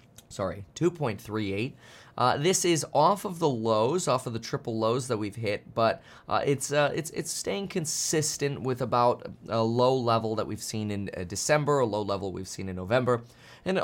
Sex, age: male, 20-39